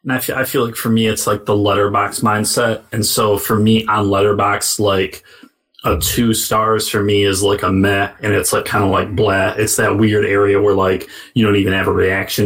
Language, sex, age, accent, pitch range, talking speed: English, male, 30-49, American, 100-115 Hz, 230 wpm